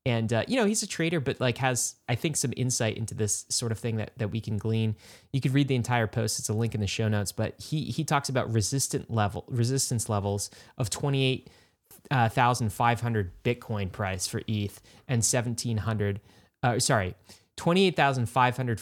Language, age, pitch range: English, 20-39, 105-130 Hz